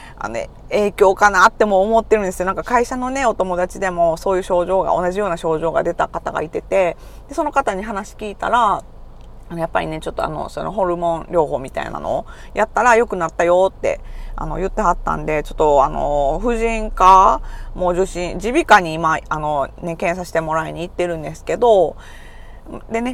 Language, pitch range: Japanese, 160-205 Hz